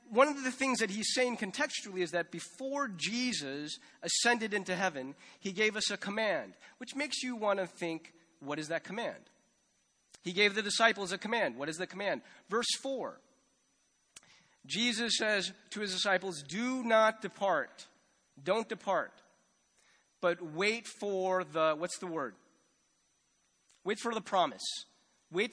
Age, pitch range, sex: 30-49, 170-230 Hz, male